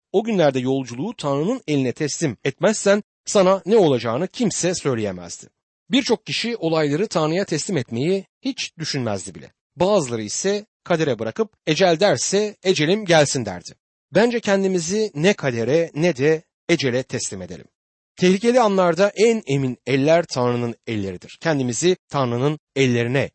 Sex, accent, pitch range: male, native, 130-195 Hz